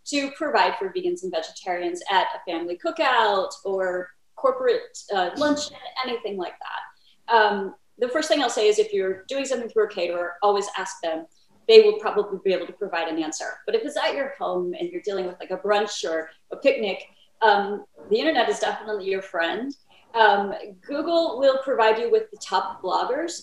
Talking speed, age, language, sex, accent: 190 wpm, 30-49, English, female, American